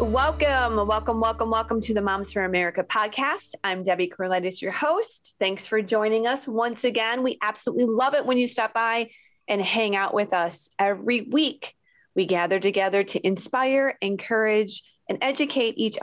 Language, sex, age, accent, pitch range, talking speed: English, female, 30-49, American, 185-245 Hz, 170 wpm